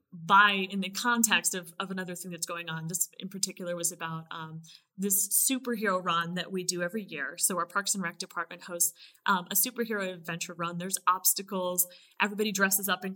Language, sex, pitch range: English, female, 175-205 Hz